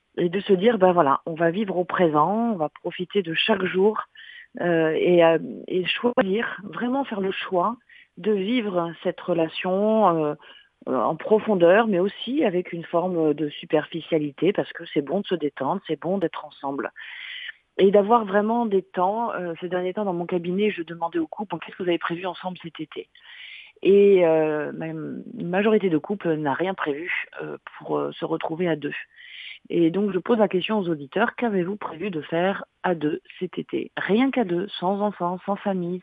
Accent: French